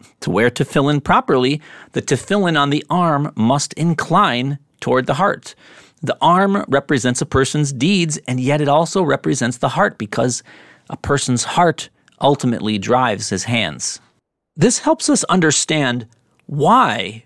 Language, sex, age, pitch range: English, male, 40-59, 115-160 Hz